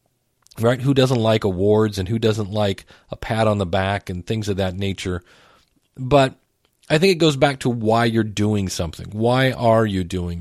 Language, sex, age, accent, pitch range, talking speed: English, male, 40-59, American, 105-140 Hz, 195 wpm